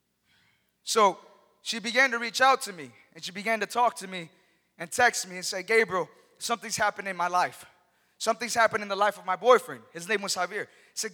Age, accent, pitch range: 20-39, American, 190-245 Hz